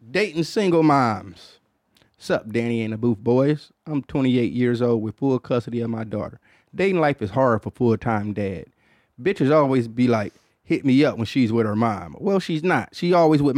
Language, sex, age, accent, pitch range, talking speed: English, male, 30-49, American, 110-145 Hz, 195 wpm